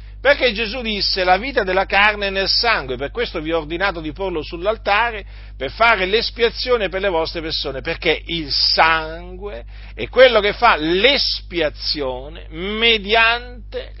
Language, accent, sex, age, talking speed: Italian, native, male, 50-69, 140 wpm